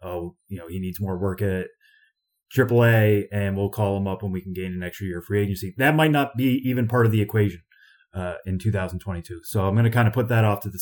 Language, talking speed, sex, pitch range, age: English, 260 wpm, male, 95-115 Hz, 30-49